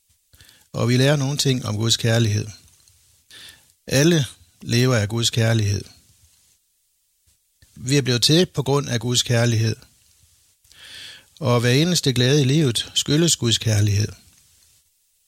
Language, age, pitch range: Danish, 60-79, 100-135 Hz